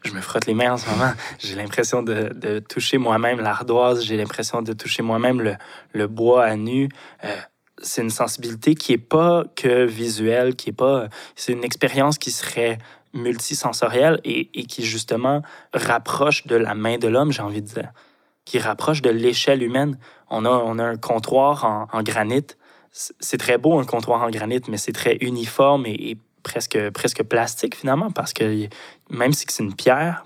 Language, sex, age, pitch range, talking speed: French, male, 20-39, 110-130 Hz, 190 wpm